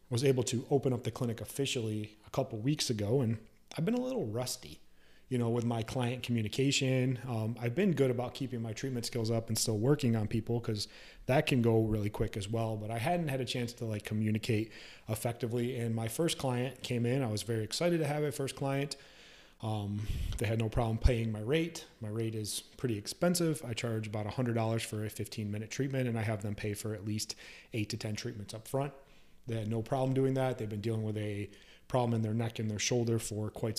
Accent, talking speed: American, 230 wpm